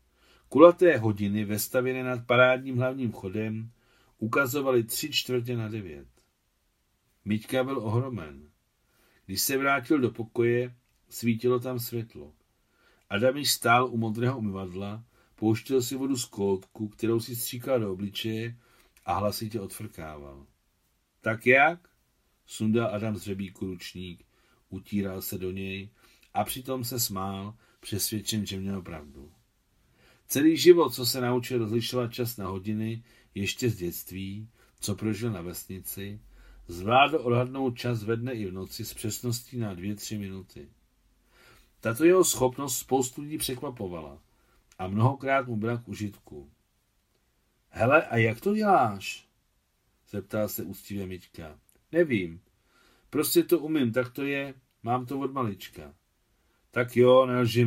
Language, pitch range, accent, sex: Czech, 100-125 Hz, native, male